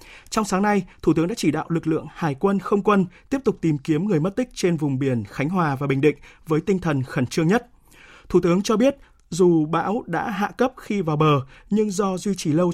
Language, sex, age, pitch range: Vietnamese, male, 20-39, 155-200 Hz